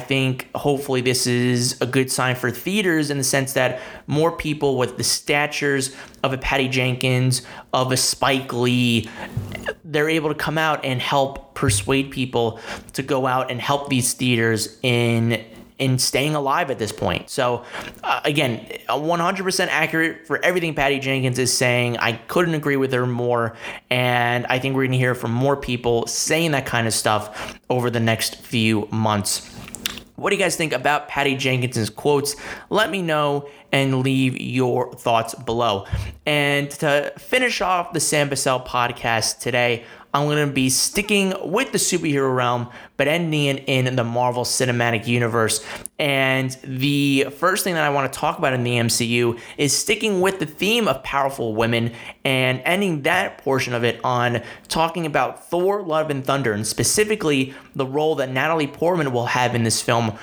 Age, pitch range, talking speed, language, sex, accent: 30-49, 120-145 Hz, 175 wpm, English, male, American